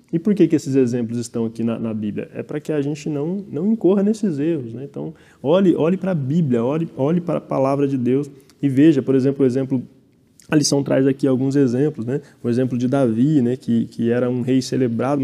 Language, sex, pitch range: Portuguese, male, 125-145 Hz